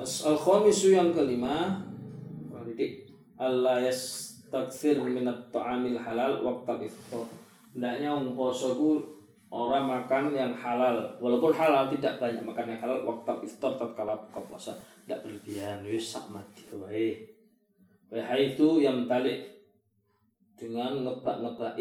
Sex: male